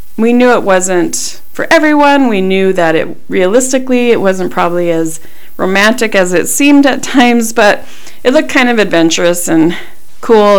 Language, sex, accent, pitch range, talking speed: English, female, American, 170-235 Hz, 165 wpm